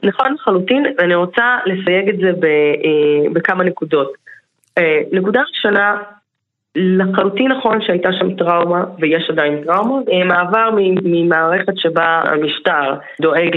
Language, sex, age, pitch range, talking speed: Hebrew, female, 20-39, 165-210 Hz, 125 wpm